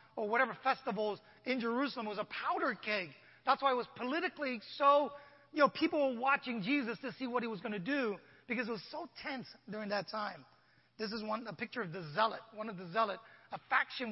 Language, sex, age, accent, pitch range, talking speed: English, male, 30-49, American, 205-255 Hz, 215 wpm